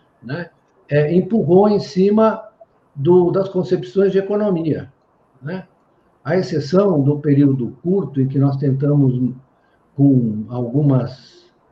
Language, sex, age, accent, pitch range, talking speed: Portuguese, male, 60-79, Brazilian, 125-170 Hz, 115 wpm